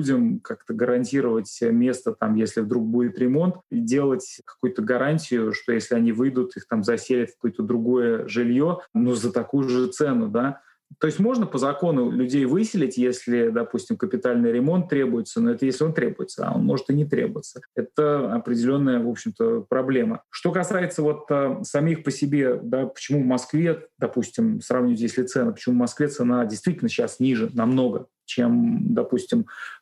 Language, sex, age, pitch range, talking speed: Russian, male, 30-49, 120-150 Hz, 160 wpm